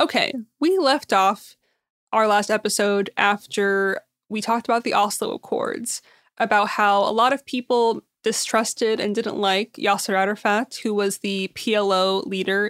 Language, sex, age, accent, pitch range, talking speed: English, female, 20-39, American, 205-245 Hz, 145 wpm